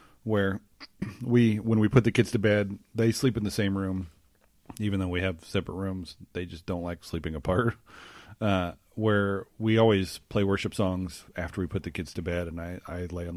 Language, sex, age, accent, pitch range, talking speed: English, male, 40-59, American, 85-100 Hz, 205 wpm